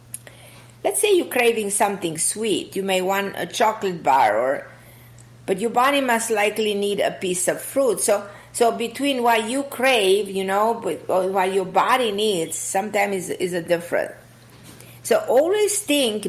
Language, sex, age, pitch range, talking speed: English, female, 50-69, 175-230 Hz, 160 wpm